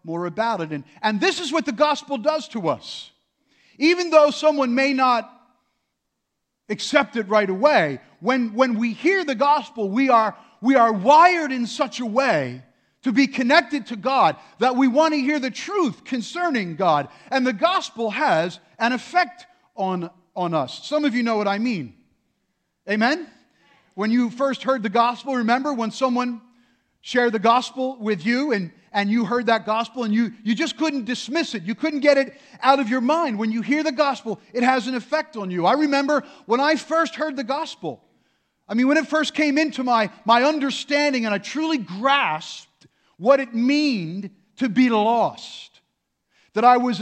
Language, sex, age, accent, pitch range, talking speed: English, male, 50-69, American, 225-290 Hz, 185 wpm